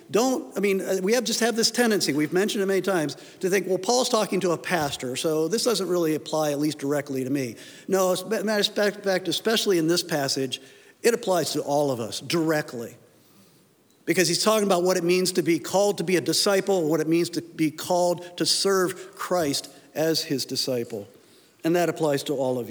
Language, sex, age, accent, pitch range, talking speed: English, male, 50-69, American, 150-220 Hz, 210 wpm